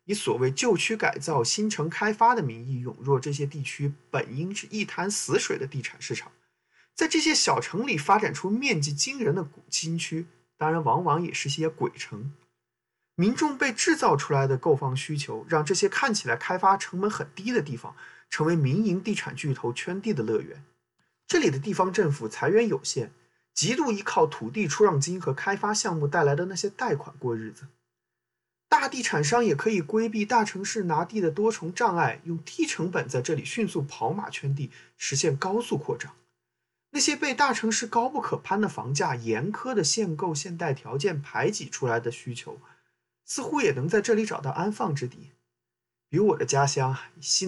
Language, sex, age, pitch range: Chinese, male, 20-39, 135-210 Hz